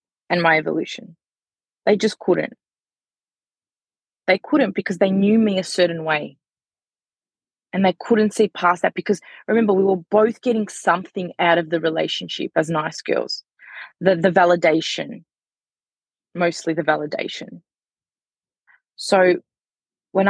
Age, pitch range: 20-39, 185-245 Hz